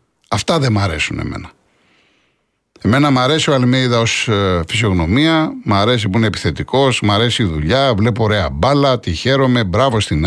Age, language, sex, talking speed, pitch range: 60-79, Greek, male, 160 wpm, 105-140 Hz